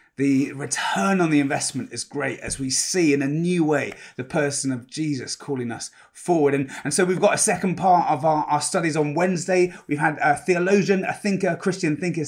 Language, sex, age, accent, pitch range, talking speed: English, male, 30-49, British, 140-175 Hz, 210 wpm